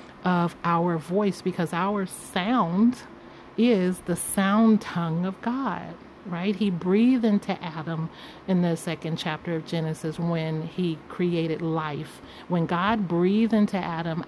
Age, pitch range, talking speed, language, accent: 40-59, 165-200 Hz, 135 wpm, English, American